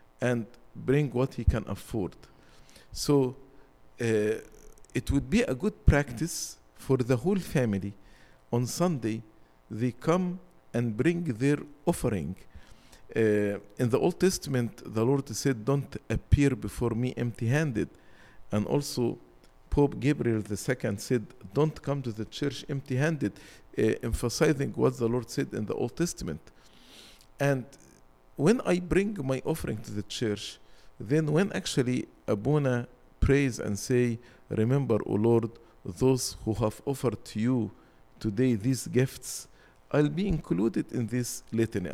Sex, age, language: male, 50-69, English